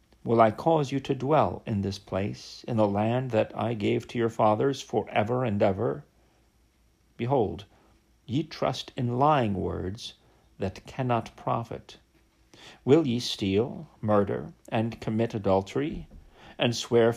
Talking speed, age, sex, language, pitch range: 140 wpm, 50-69, male, English, 110-140 Hz